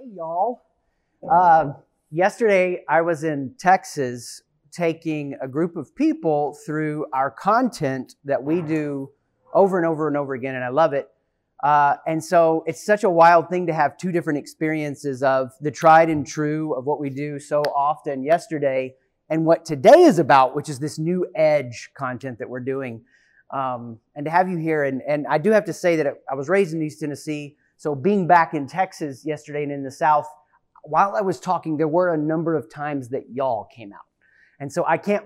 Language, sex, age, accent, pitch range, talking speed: English, male, 30-49, American, 135-165 Hz, 195 wpm